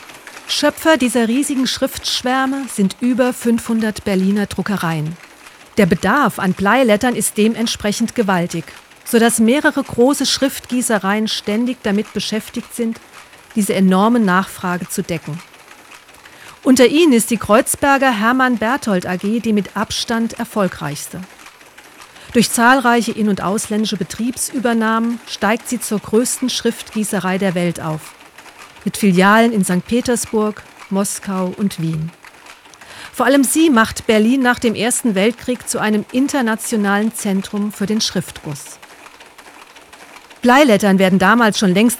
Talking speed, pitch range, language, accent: 120 wpm, 195-240 Hz, German, German